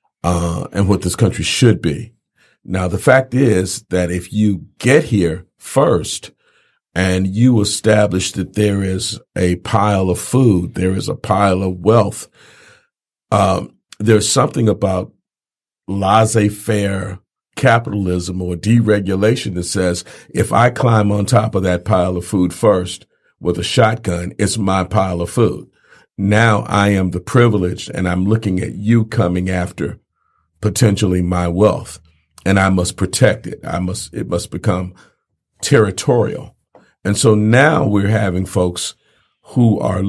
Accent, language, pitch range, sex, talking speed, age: American, English, 90-110 Hz, male, 145 wpm, 50-69